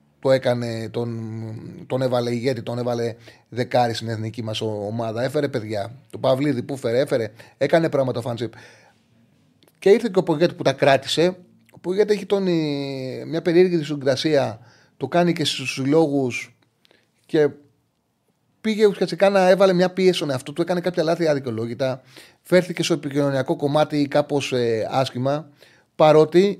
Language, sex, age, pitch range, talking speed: Greek, male, 30-49, 120-180 Hz, 150 wpm